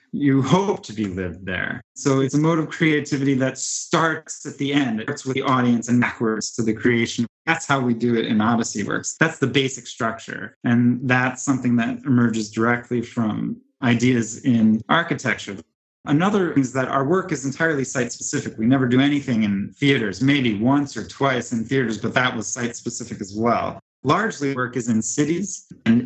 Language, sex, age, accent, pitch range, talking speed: English, male, 30-49, American, 115-140 Hz, 185 wpm